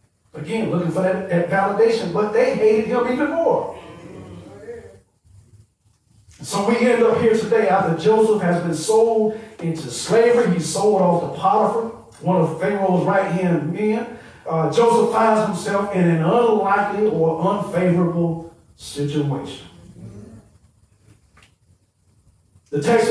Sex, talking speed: male, 120 wpm